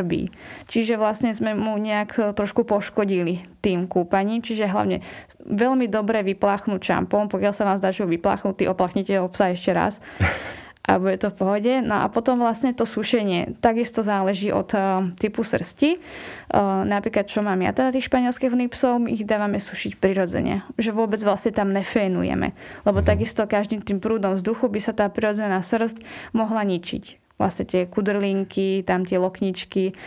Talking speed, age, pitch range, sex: 160 wpm, 20-39, 190-220 Hz, female